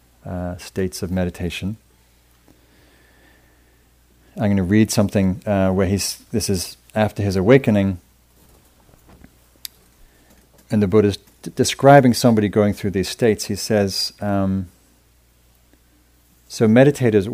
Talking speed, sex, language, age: 115 wpm, male, English, 40-59